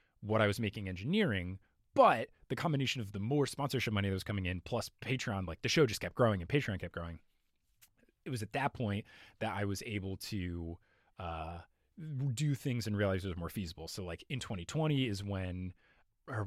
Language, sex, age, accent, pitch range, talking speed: English, male, 20-39, American, 95-125 Hz, 200 wpm